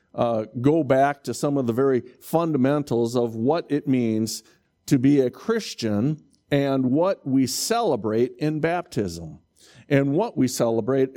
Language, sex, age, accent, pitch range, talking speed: English, male, 50-69, American, 110-160 Hz, 145 wpm